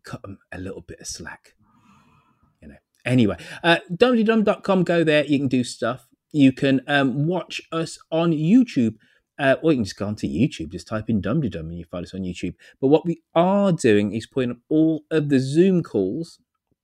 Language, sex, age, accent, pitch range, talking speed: English, male, 30-49, British, 110-160 Hz, 205 wpm